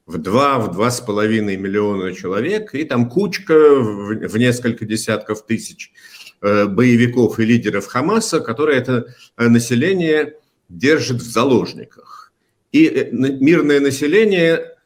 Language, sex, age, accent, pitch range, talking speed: Russian, male, 50-69, native, 115-150 Hz, 95 wpm